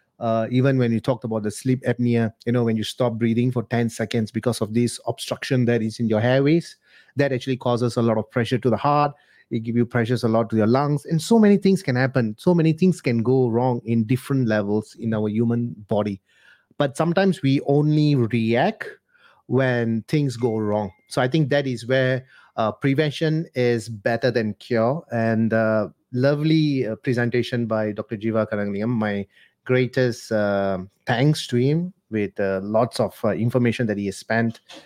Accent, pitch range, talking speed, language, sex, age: Indian, 115-155 Hz, 190 wpm, English, male, 30-49